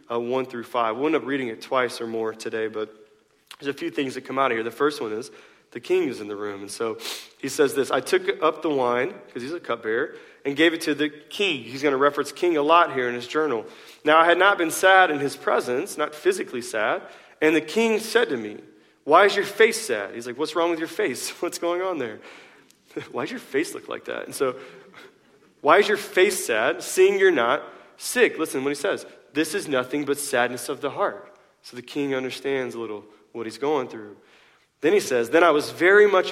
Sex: male